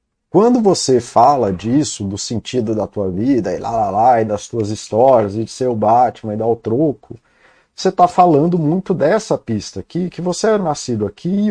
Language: Portuguese